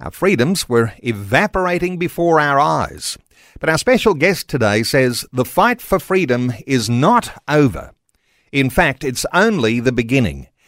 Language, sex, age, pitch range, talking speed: English, male, 50-69, 125-175 Hz, 145 wpm